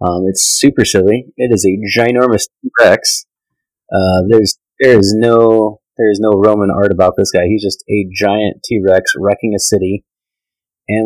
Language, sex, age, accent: English, male, 30-49, American